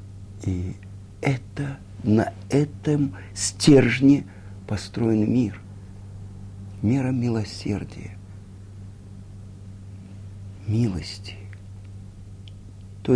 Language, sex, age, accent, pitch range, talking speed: Russian, male, 50-69, native, 100-135 Hz, 50 wpm